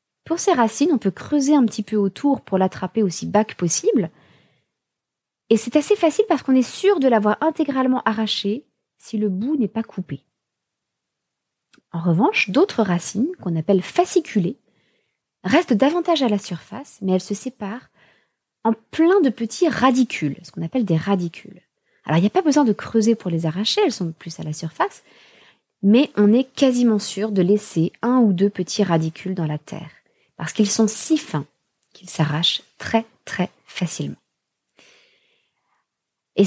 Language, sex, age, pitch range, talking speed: French, female, 30-49, 185-255 Hz, 170 wpm